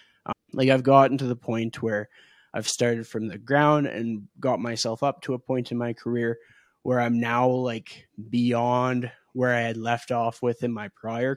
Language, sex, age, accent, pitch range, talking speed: English, male, 20-39, American, 115-140 Hz, 195 wpm